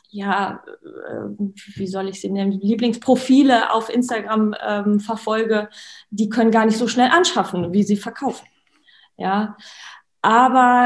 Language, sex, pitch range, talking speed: German, female, 200-230 Hz, 125 wpm